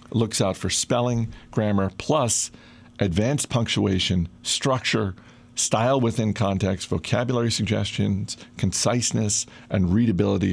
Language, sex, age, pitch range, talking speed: English, male, 50-69, 95-120 Hz, 95 wpm